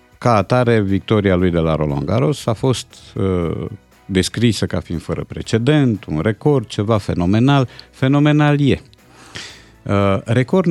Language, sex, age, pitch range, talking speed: Romanian, male, 50-69, 85-120 Hz, 130 wpm